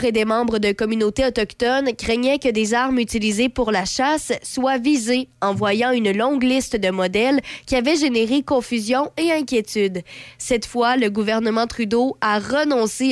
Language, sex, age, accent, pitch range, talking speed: French, female, 20-39, Canadian, 215-265 Hz, 165 wpm